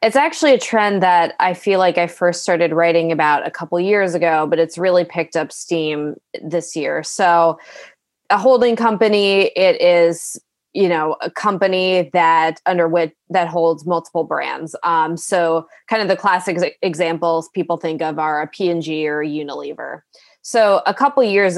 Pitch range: 170-200 Hz